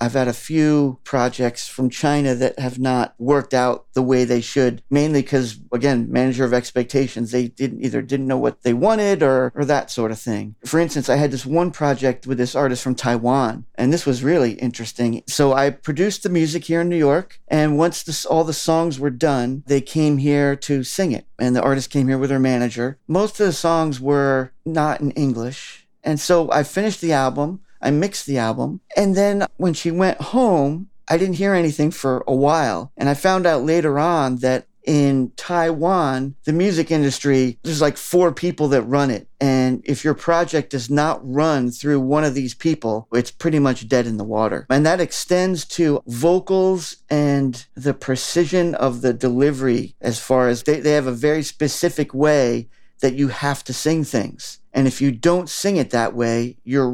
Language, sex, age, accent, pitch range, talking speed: English, male, 40-59, American, 130-160 Hz, 195 wpm